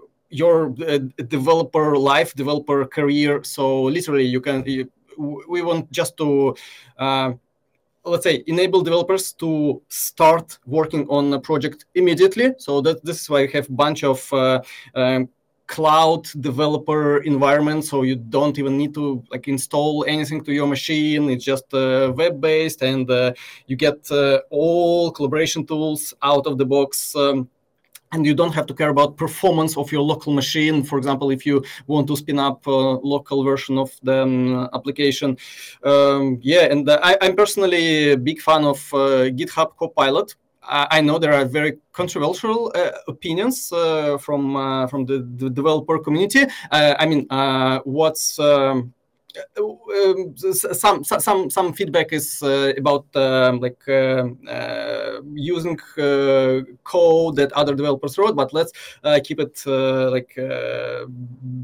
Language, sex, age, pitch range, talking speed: English, male, 20-39, 135-160 Hz, 155 wpm